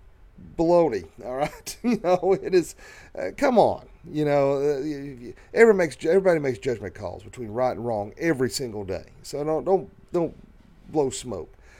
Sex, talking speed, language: male, 175 wpm, English